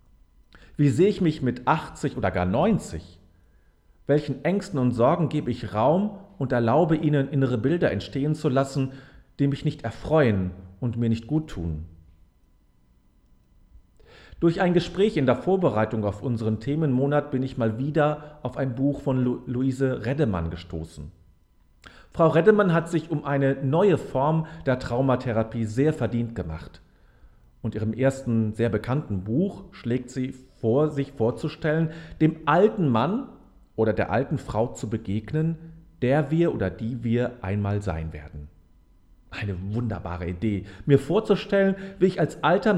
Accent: German